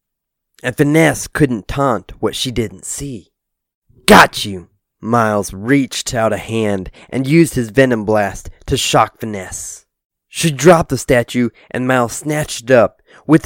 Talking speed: 145 wpm